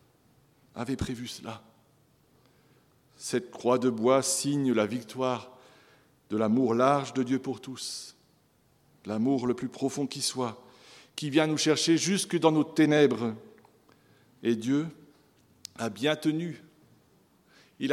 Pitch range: 115-150 Hz